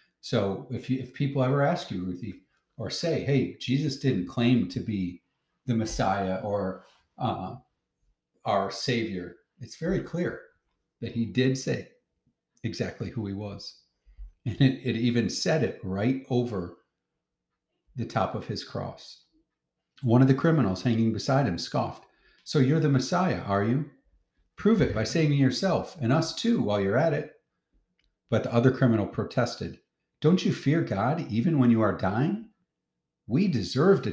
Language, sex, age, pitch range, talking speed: English, male, 40-59, 95-135 Hz, 160 wpm